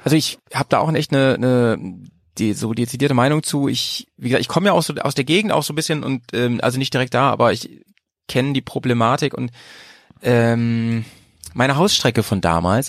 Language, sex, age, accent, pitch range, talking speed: German, male, 30-49, German, 110-135 Hz, 205 wpm